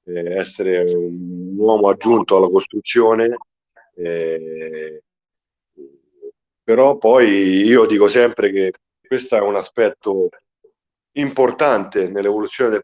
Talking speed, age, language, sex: 95 wpm, 50-69, Italian, male